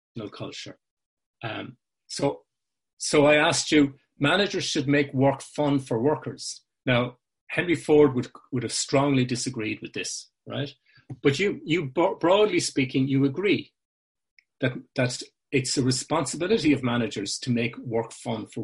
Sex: male